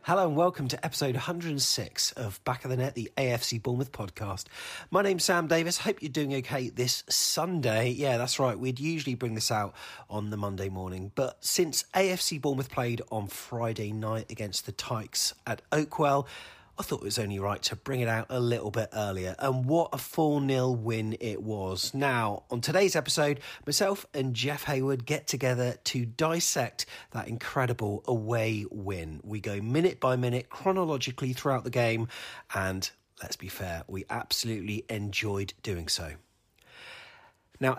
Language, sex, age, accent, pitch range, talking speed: English, male, 30-49, British, 110-150 Hz, 170 wpm